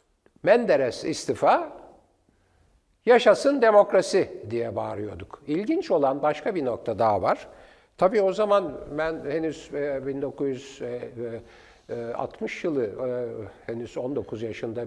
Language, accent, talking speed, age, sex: Turkish, native, 95 wpm, 60-79, male